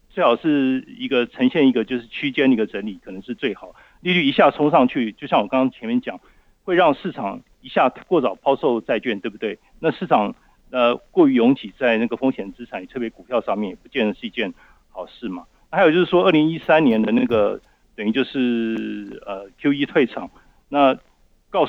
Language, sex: Chinese, male